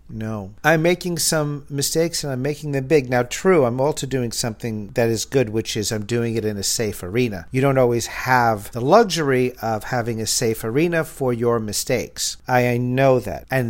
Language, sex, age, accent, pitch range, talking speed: English, male, 50-69, American, 105-130 Hz, 205 wpm